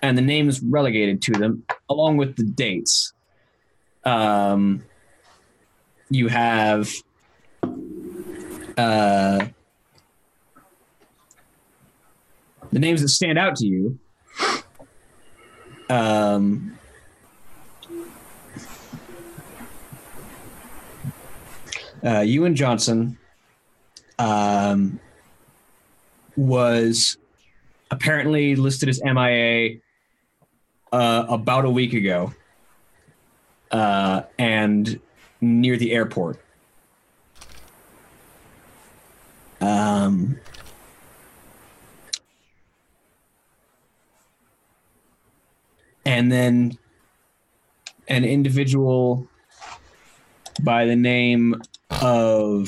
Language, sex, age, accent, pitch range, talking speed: English, male, 30-49, American, 105-125 Hz, 55 wpm